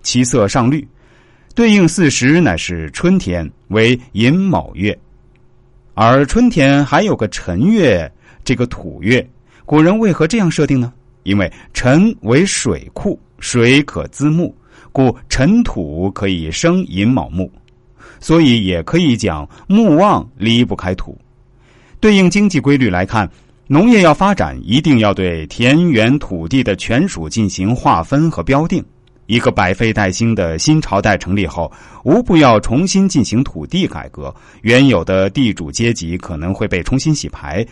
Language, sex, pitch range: Chinese, male, 95-145 Hz